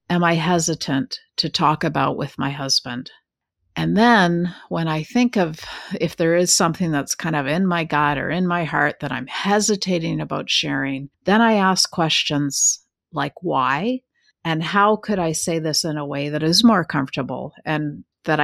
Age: 50-69